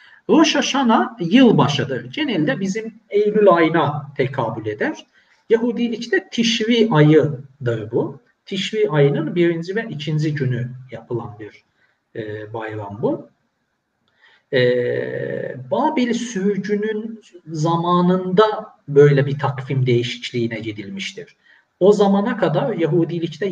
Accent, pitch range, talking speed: native, 120-170 Hz, 95 wpm